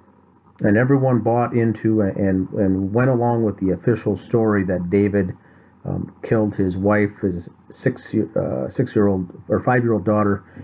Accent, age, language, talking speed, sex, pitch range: American, 40-59, English, 140 wpm, male, 95-115 Hz